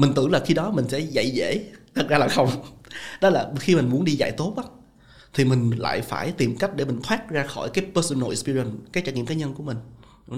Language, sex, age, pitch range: Vietnamese, male, 20-39, 125-150 Hz